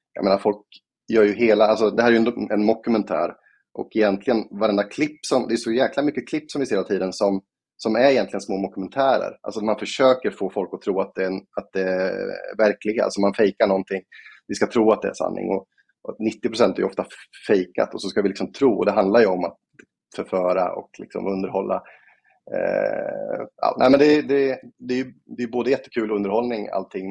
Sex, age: male, 30-49